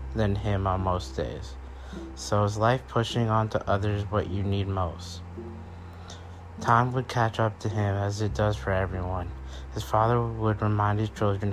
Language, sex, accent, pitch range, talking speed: English, male, American, 90-110 Hz, 170 wpm